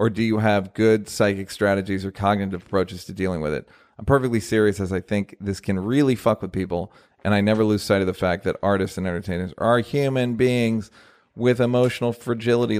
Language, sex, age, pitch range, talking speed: English, male, 40-59, 95-115 Hz, 205 wpm